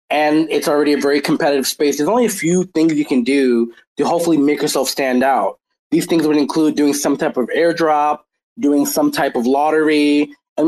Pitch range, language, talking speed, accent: 140-175 Hz, English, 200 wpm, American